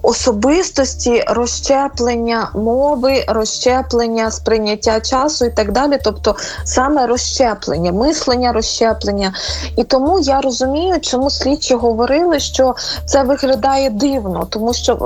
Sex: female